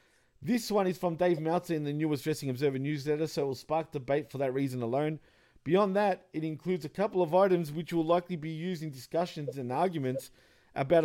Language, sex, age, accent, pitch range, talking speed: English, male, 40-59, Australian, 140-180 Hz, 210 wpm